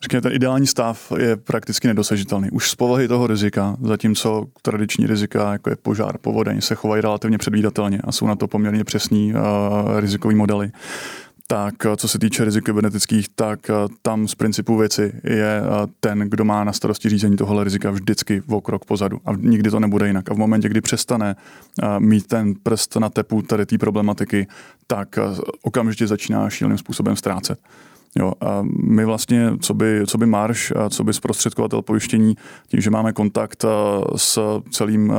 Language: Czech